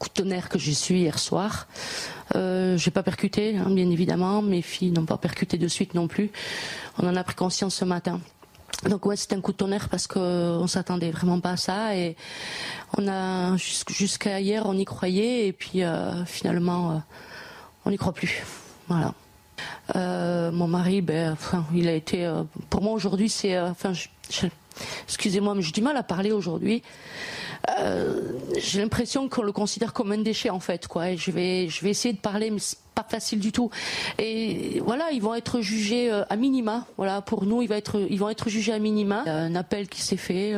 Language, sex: French, female